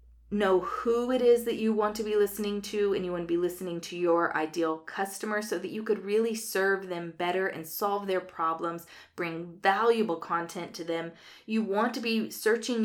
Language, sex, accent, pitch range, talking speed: English, female, American, 180-225 Hz, 200 wpm